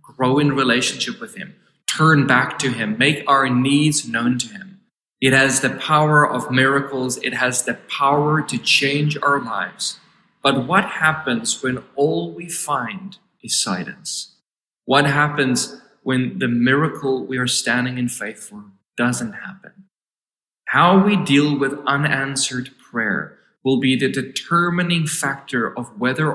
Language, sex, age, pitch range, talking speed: English, male, 20-39, 125-165 Hz, 145 wpm